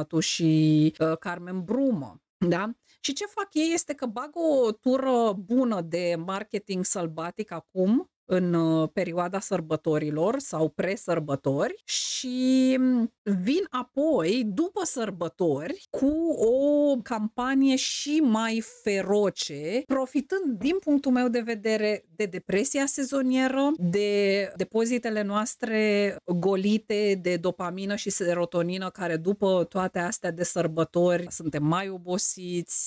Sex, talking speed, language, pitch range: female, 110 wpm, Romanian, 180-250 Hz